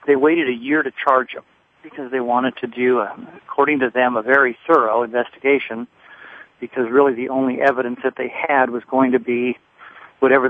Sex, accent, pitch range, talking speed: male, American, 120-135 Hz, 190 wpm